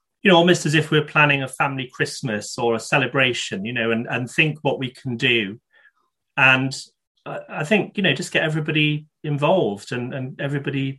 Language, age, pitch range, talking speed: English, 30-49, 120-145 Hz, 185 wpm